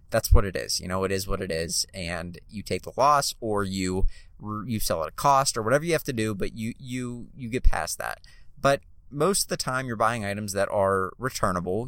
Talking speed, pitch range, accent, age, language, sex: 235 wpm, 95-130 Hz, American, 30-49, English, male